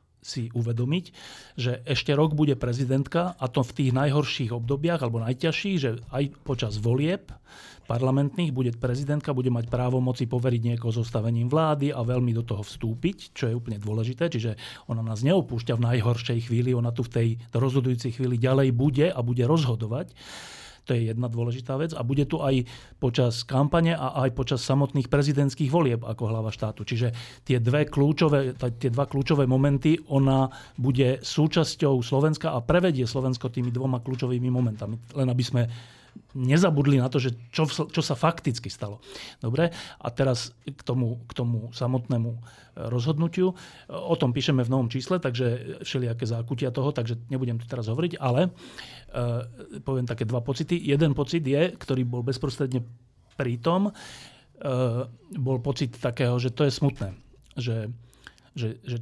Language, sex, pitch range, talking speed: Slovak, male, 120-140 Hz, 160 wpm